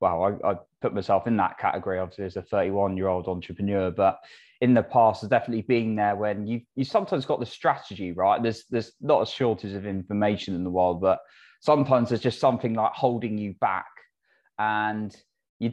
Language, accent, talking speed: English, British, 200 wpm